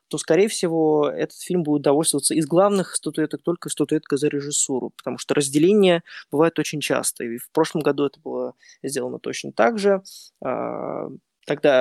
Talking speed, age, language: 160 wpm, 20-39, Ukrainian